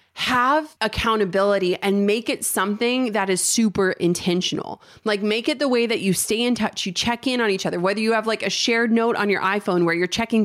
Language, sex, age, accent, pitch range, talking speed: English, female, 30-49, American, 185-230 Hz, 225 wpm